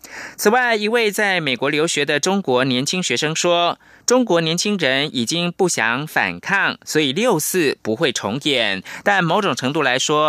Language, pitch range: Chinese, 145-195 Hz